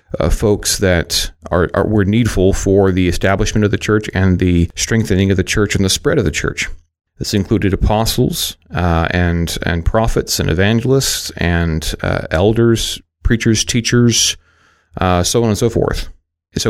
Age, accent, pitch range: 40-59, American, 85-105 Hz